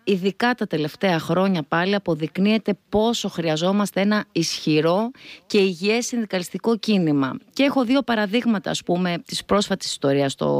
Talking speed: 135 wpm